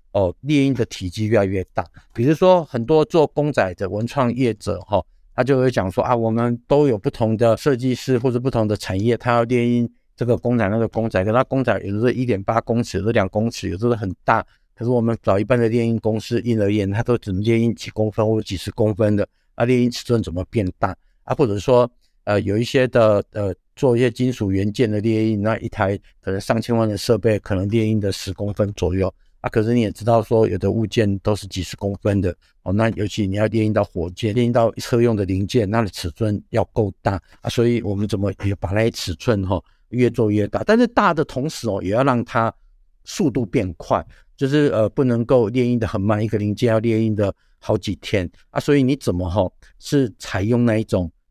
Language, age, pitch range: Chinese, 50-69, 100-120 Hz